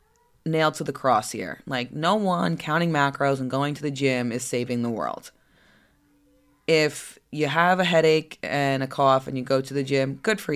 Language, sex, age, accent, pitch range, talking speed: English, female, 20-39, American, 130-160 Hz, 200 wpm